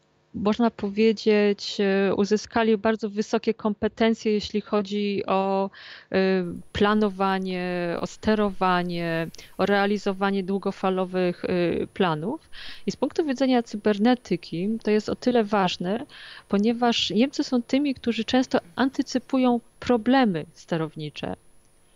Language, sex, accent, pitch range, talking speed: Polish, female, native, 195-240 Hz, 95 wpm